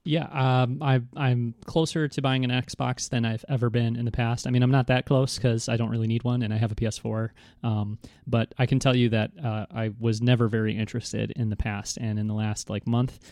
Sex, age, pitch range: male, 30-49, 110-130 Hz